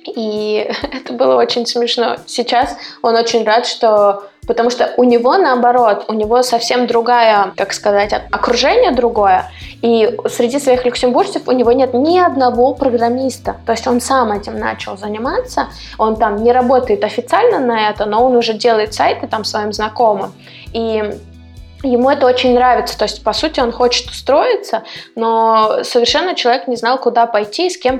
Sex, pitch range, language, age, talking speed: female, 215-250 Hz, Russian, 20-39, 165 wpm